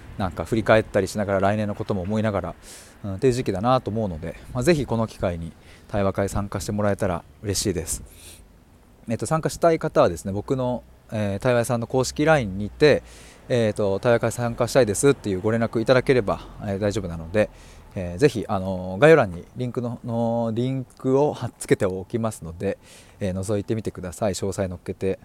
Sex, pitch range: male, 95-135 Hz